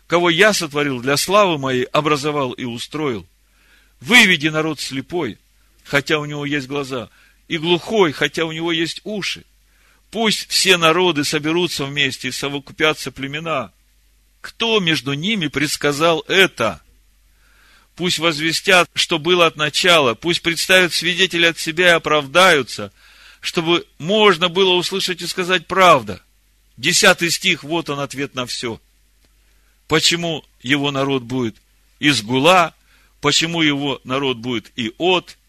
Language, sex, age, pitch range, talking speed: Russian, male, 50-69, 140-180 Hz, 130 wpm